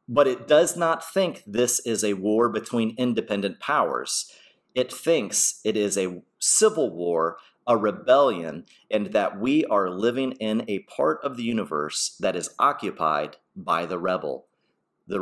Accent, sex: American, male